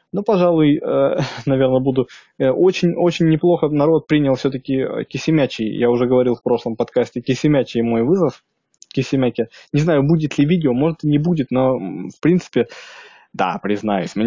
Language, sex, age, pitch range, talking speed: Russian, male, 20-39, 115-150 Hz, 145 wpm